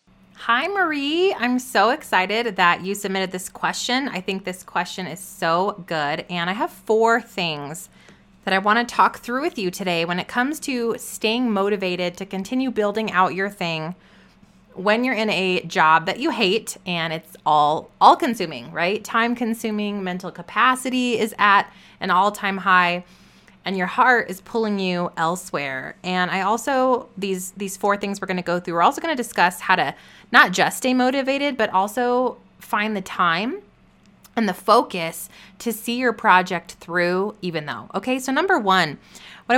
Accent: American